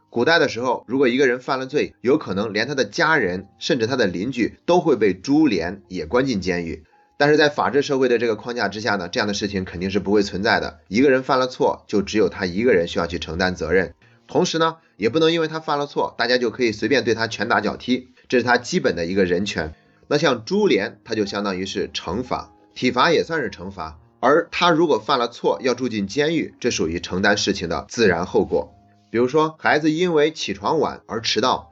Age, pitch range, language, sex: 30-49, 100-145 Hz, Chinese, male